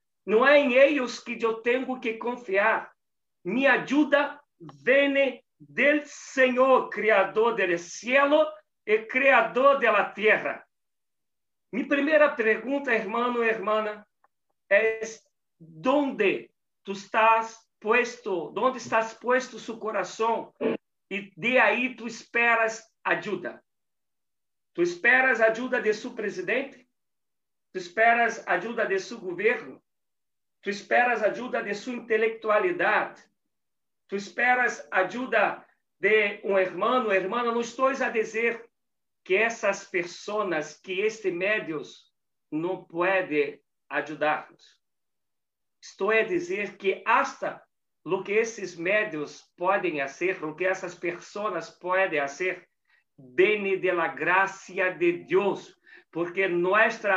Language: Portuguese